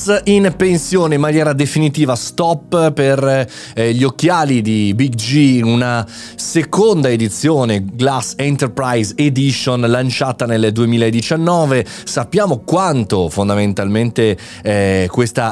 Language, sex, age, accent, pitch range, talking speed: Italian, male, 30-49, native, 115-155 Hz, 110 wpm